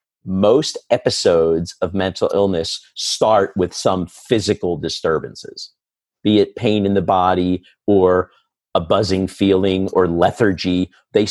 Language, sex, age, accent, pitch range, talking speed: English, male, 50-69, American, 90-115 Hz, 120 wpm